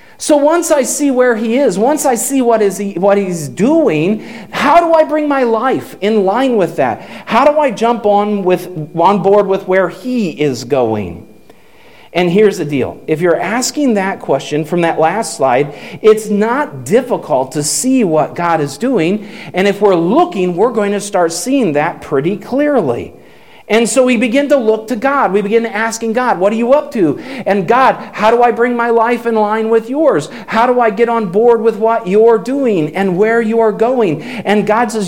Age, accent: 40-59, American